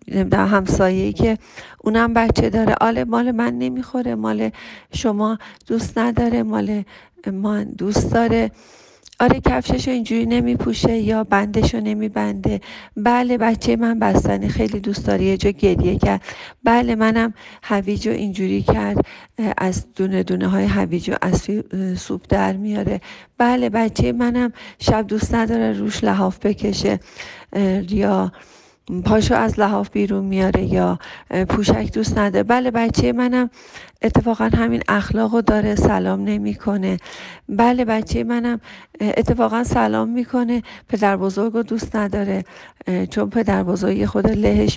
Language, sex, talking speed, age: Persian, female, 120 wpm, 40-59